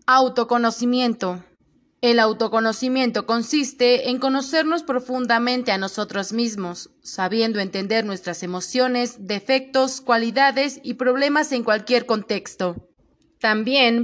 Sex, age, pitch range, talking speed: female, 20-39, 205-265 Hz, 95 wpm